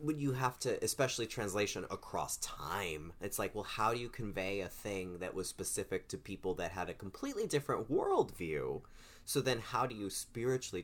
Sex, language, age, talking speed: male, English, 30-49, 190 wpm